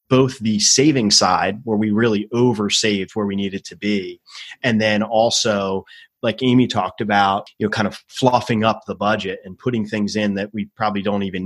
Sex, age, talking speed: male, 30-49, 195 wpm